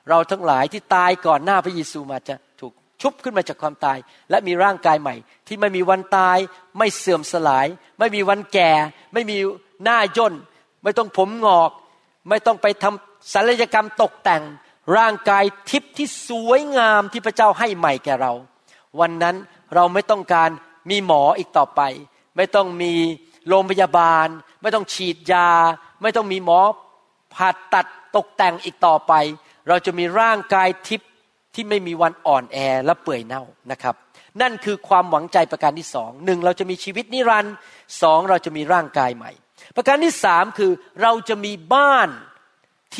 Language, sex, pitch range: Thai, male, 170-220 Hz